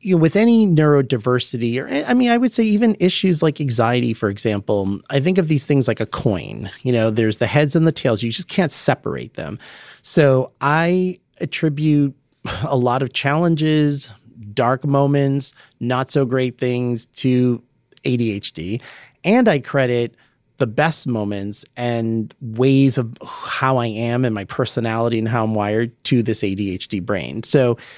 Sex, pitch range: male, 120-160 Hz